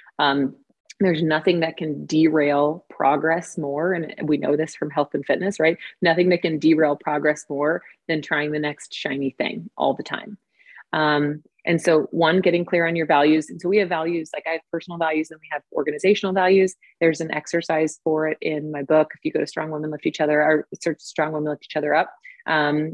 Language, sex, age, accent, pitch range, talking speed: English, female, 30-49, American, 150-175 Hz, 210 wpm